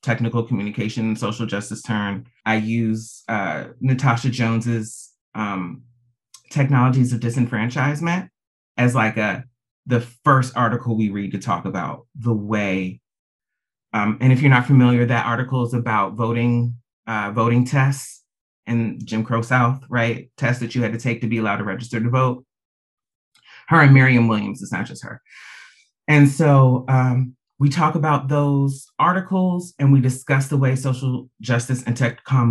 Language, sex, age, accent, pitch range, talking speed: English, male, 30-49, American, 115-130 Hz, 160 wpm